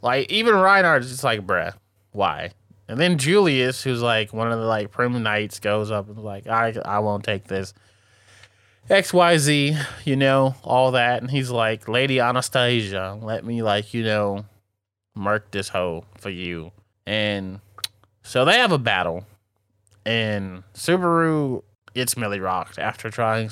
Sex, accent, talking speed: male, American, 160 wpm